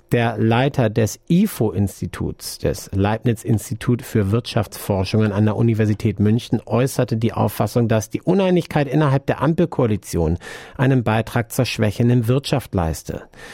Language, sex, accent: German, male, German